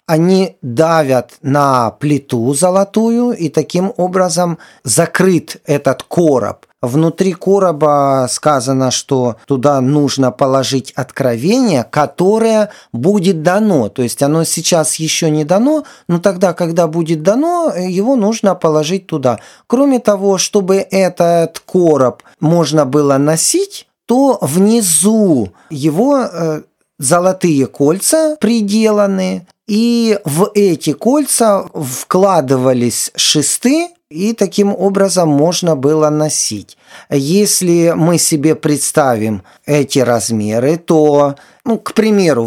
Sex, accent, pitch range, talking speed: male, native, 150-205 Hz, 105 wpm